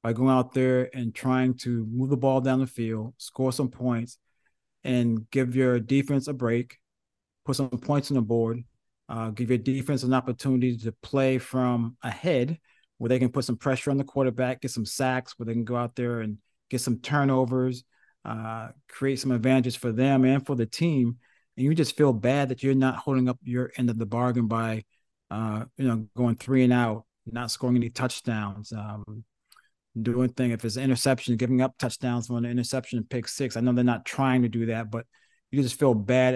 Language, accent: English, American